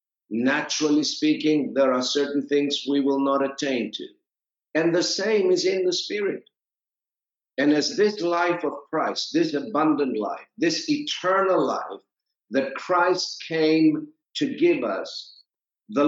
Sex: male